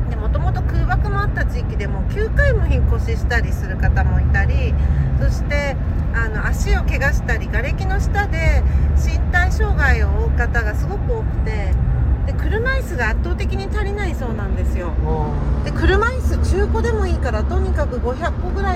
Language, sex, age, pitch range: Japanese, female, 40-59, 70-80 Hz